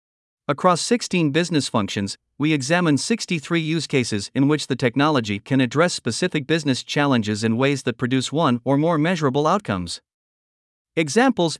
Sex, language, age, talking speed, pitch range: male, Vietnamese, 50-69, 145 wpm, 130-170 Hz